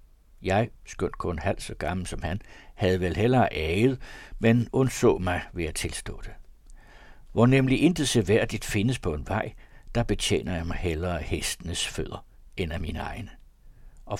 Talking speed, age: 170 wpm, 60-79